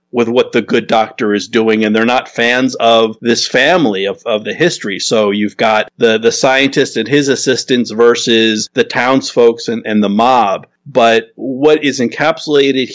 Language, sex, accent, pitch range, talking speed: English, male, American, 115-135 Hz, 175 wpm